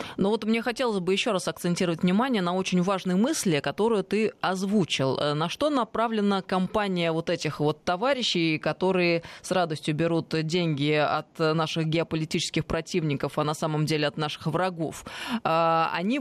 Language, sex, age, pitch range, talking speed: Russian, female, 20-39, 160-210 Hz, 150 wpm